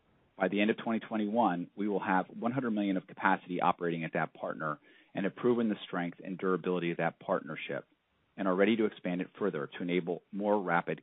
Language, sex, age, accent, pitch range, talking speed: English, male, 40-59, American, 85-105 Hz, 200 wpm